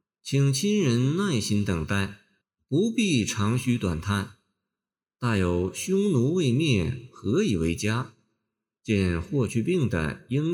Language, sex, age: Chinese, male, 50-69